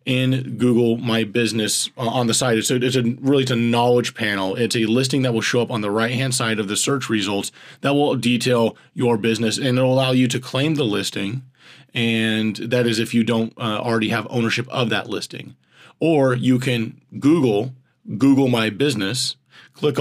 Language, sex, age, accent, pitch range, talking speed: English, male, 30-49, American, 115-130 Hz, 195 wpm